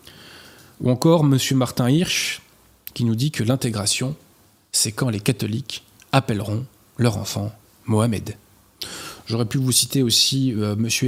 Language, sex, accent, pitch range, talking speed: French, male, French, 110-140 Hz, 130 wpm